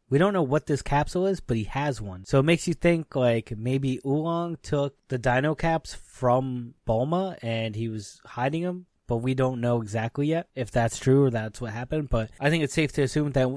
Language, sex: English, male